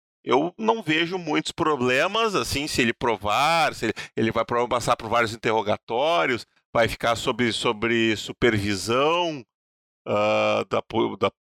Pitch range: 110-140 Hz